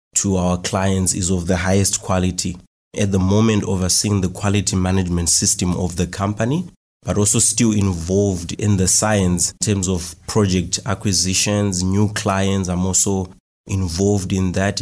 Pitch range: 95-110 Hz